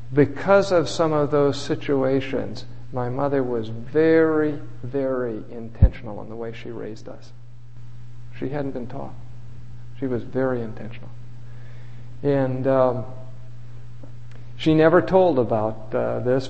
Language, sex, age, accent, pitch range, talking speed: English, male, 50-69, American, 120-135 Hz, 125 wpm